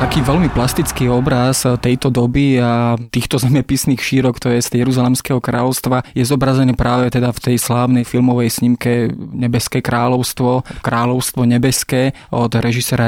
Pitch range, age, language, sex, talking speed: 120-130 Hz, 20-39, Slovak, male, 140 wpm